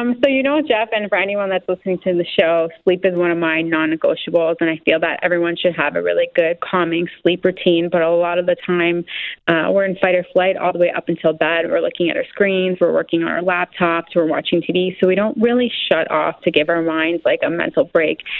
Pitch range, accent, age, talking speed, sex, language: 165-190 Hz, American, 30-49, 250 wpm, female, English